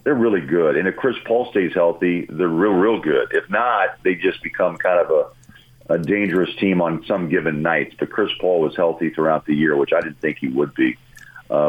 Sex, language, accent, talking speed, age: male, English, American, 225 wpm, 50-69